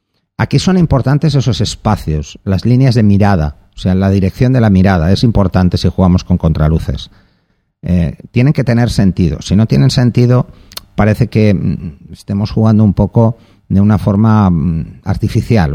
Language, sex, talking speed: Spanish, male, 155 wpm